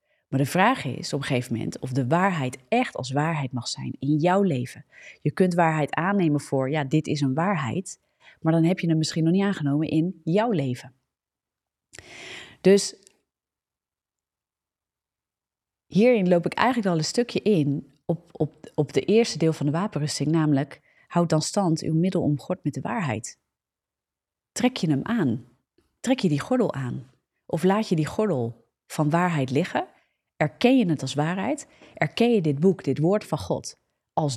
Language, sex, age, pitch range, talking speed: Dutch, female, 30-49, 140-190 Hz, 175 wpm